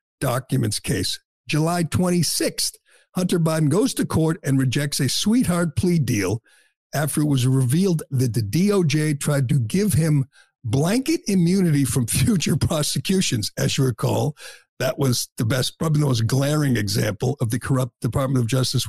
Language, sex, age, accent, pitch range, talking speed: English, male, 60-79, American, 130-170 Hz, 155 wpm